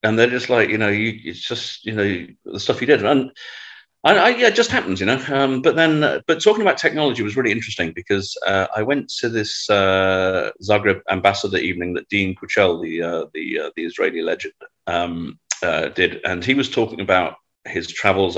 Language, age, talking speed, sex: English, 40-59, 210 wpm, male